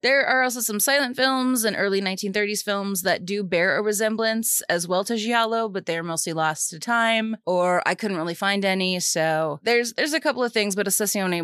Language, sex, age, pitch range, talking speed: English, female, 20-39, 170-210 Hz, 210 wpm